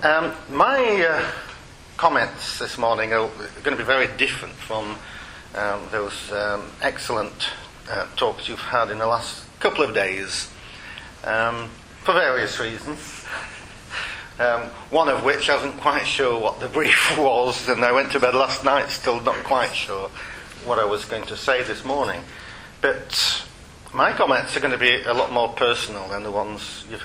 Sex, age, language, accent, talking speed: male, 40-59, English, British, 170 wpm